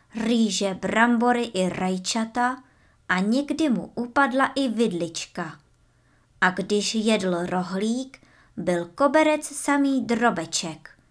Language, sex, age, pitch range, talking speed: Czech, male, 20-39, 180-245 Hz, 95 wpm